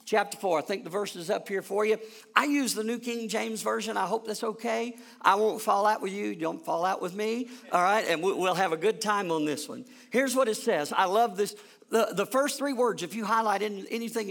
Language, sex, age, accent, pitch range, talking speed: English, male, 50-69, American, 195-240 Hz, 250 wpm